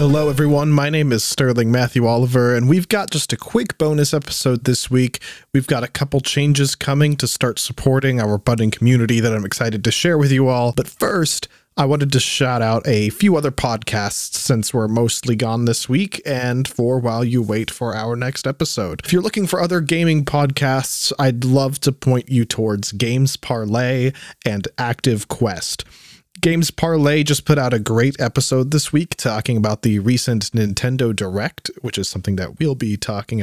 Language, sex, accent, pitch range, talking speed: English, male, American, 115-145 Hz, 190 wpm